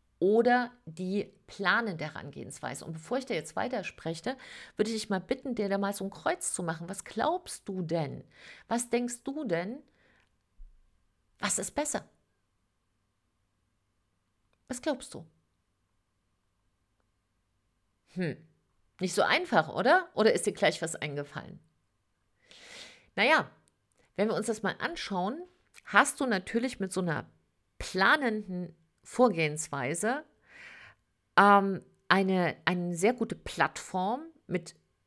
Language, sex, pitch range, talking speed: German, female, 145-215 Hz, 125 wpm